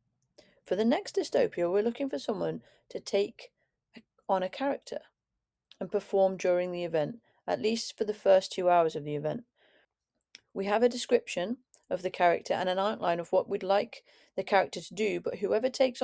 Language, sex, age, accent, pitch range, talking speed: English, female, 30-49, British, 180-220 Hz, 185 wpm